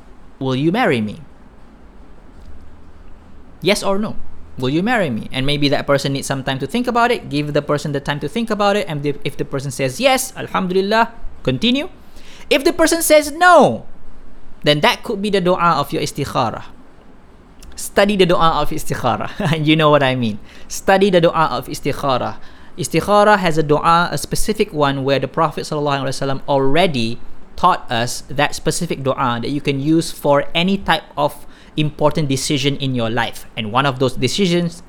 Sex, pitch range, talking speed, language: male, 130-175 Hz, 180 wpm, Malay